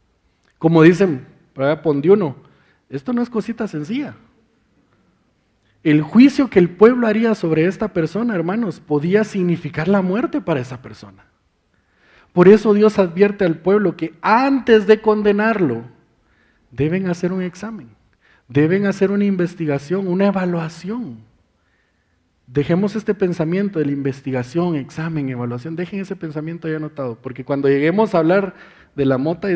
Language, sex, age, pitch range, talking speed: Spanish, male, 40-59, 130-190 Hz, 140 wpm